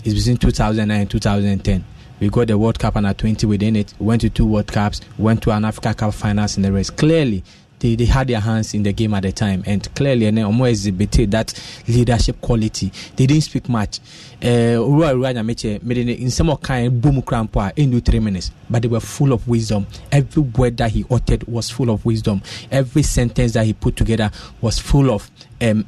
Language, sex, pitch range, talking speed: English, male, 105-135 Hz, 215 wpm